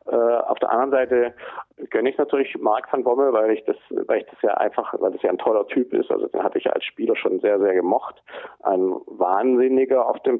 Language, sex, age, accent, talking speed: German, male, 40-59, German, 225 wpm